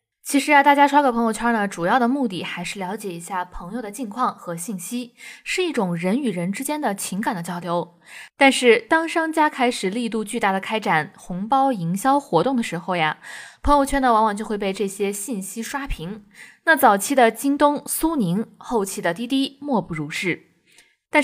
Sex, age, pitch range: female, 10-29, 185-270 Hz